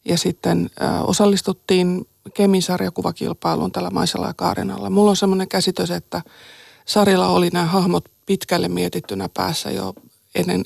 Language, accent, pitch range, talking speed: Finnish, native, 160-205 Hz, 125 wpm